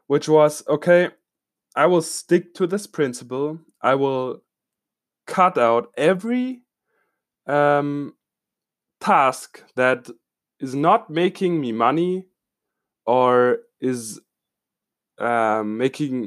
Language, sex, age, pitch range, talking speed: English, male, 20-39, 125-185 Hz, 95 wpm